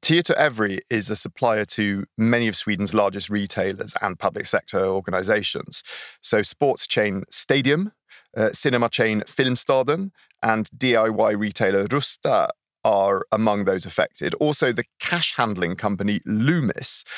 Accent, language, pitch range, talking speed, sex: British, English, 100-120 Hz, 130 wpm, male